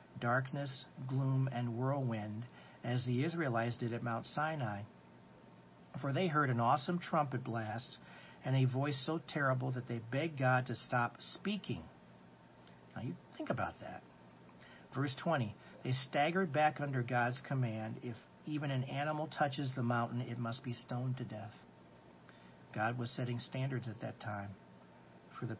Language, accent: English, American